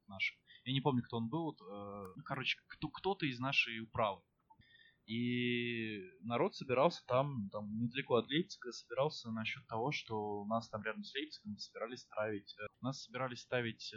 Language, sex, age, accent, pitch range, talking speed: Russian, male, 20-39, native, 105-135 Hz, 170 wpm